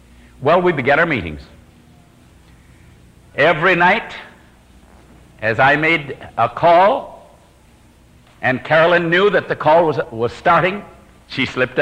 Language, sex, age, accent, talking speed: English, male, 60-79, American, 115 wpm